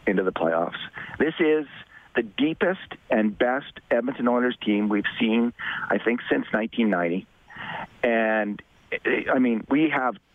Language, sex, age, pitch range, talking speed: English, male, 40-59, 105-130 Hz, 135 wpm